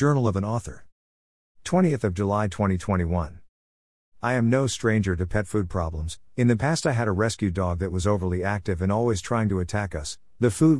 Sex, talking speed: male, 200 wpm